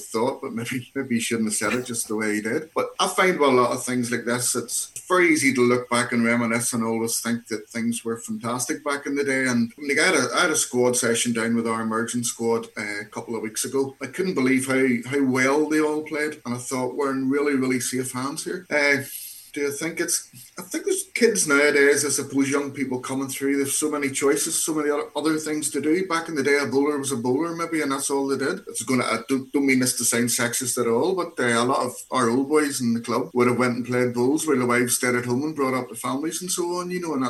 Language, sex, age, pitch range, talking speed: English, male, 30-49, 120-145 Hz, 270 wpm